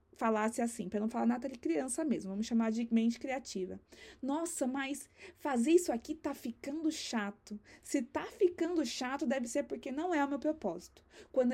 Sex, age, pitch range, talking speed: female, 20-39, 215-290 Hz, 175 wpm